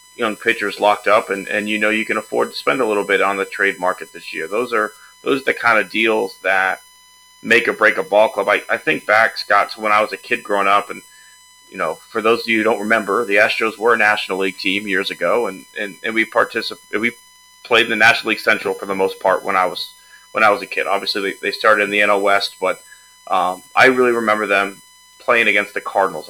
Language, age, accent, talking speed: English, 30-49, American, 250 wpm